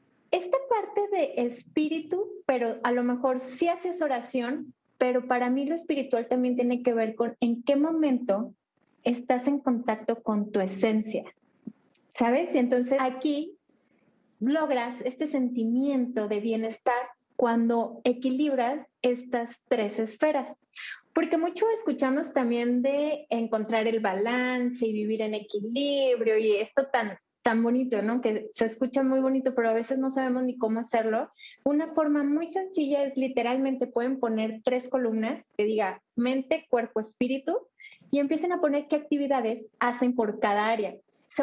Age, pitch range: 30-49, 230-280 Hz